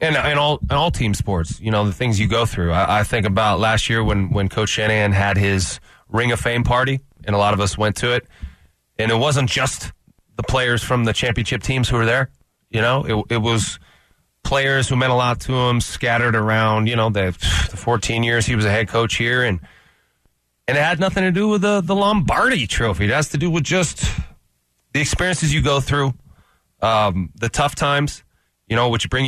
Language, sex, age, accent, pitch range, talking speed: English, male, 30-49, American, 105-130 Hz, 225 wpm